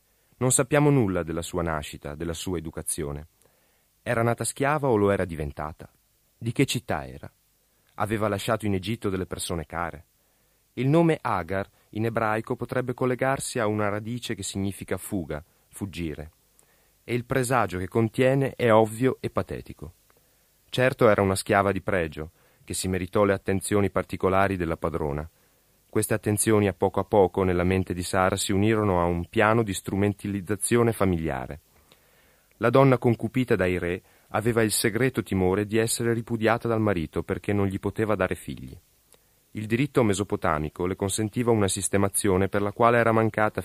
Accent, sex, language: native, male, Italian